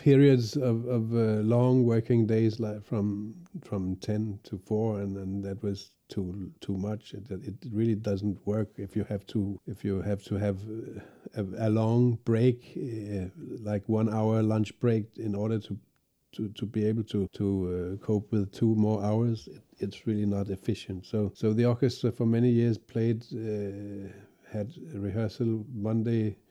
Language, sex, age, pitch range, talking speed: English, male, 50-69, 100-115 Hz, 175 wpm